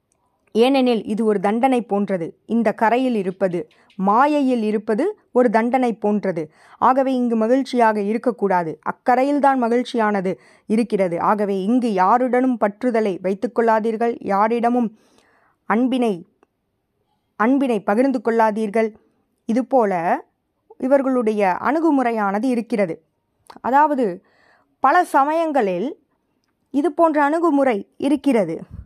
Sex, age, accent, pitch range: female, 20-39, native, 215-275 Hz